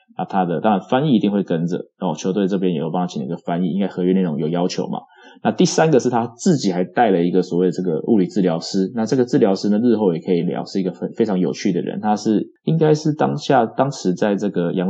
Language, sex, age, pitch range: Chinese, male, 20-39, 90-130 Hz